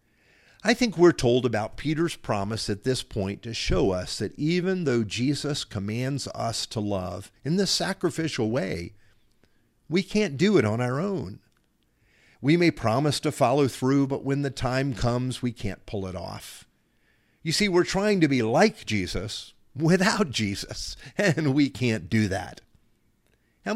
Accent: American